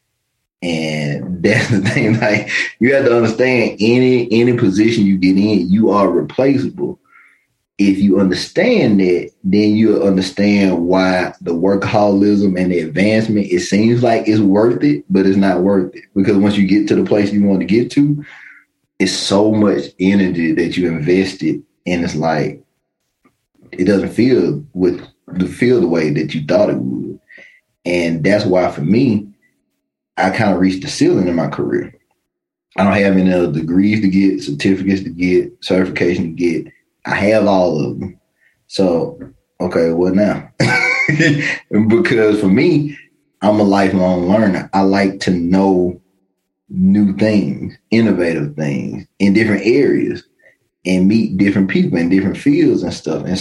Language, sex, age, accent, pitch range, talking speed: English, male, 30-49, American, 90-105 Hz, 160 wpm